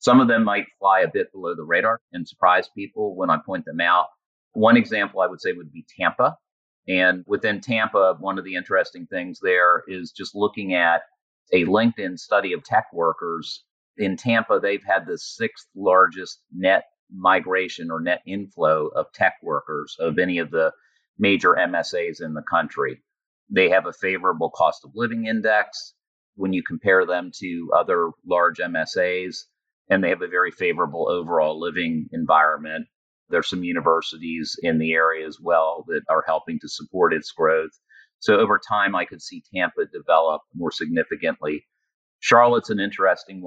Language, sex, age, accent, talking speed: English, male, 40-59, American, 170 wpm